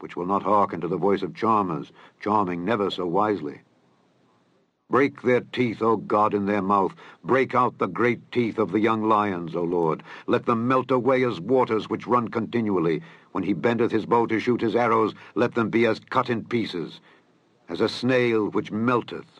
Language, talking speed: English, 190 wpm